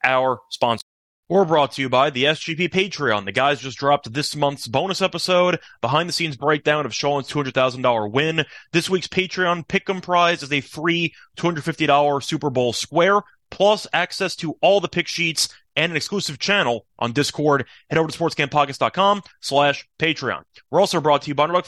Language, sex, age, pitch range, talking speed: English, male, 30-49, 135-175 Hz, 180 wpm